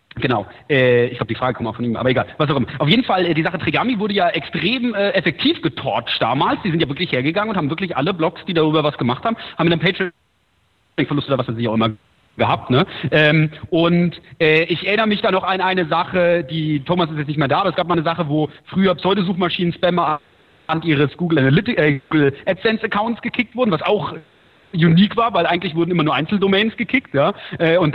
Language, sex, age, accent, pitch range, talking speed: English, male, 40-59, German, 145-185 Hz, 230 wpm